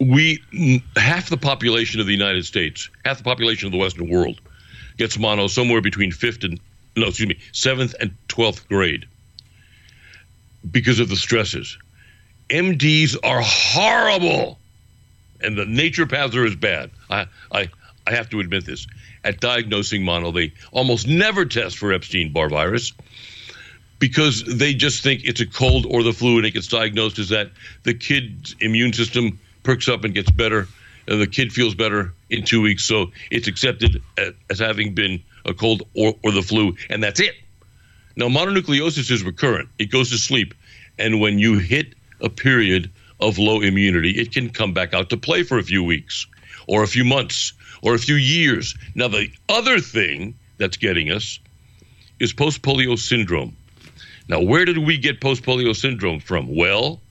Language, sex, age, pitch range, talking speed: English, male, 60-79, 100-125 Hz, 170 wpm